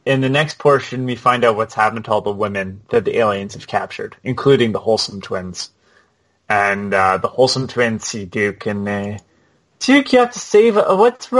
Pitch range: 110-135 Hz